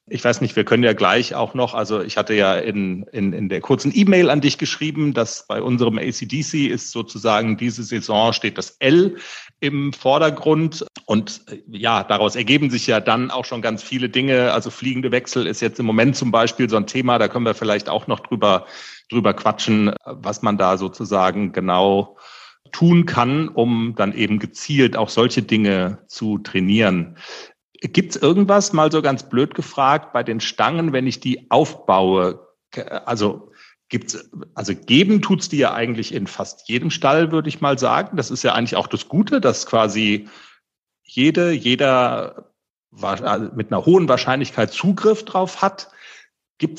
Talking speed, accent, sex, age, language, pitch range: 175 wpm, German, male, 40-59, German, 110-140 Hz